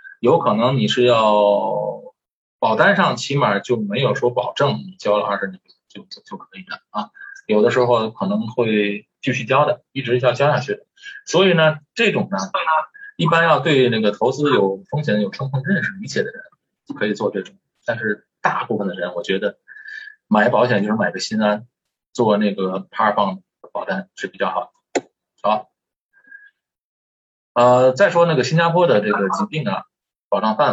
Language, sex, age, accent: Chinese, male, 20-39, native